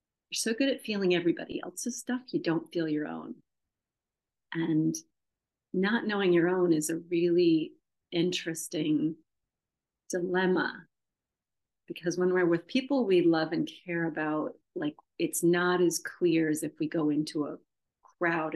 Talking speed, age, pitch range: 145 wpm, 40-59, 165-225 Hz